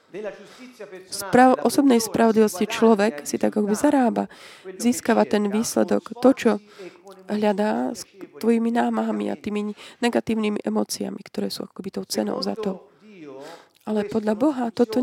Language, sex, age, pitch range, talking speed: Slovak, female, 20-39, 175-230 Hz, 135 wpm